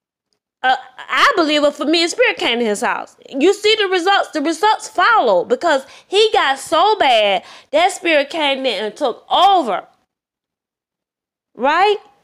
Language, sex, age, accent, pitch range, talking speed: English, female, 20-39, American, 260-350 Hz, 140 wpm